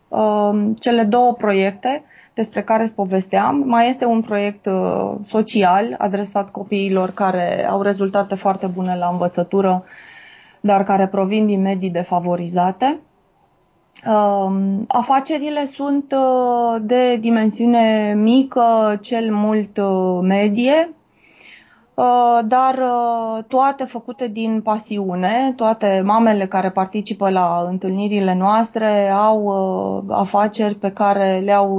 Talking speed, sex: 100 wpm, female